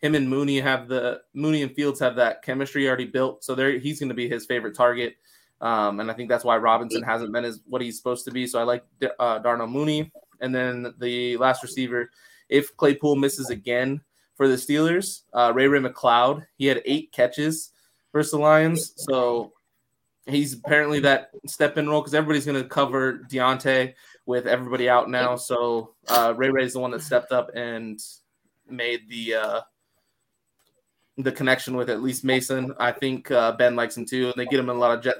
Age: 20-39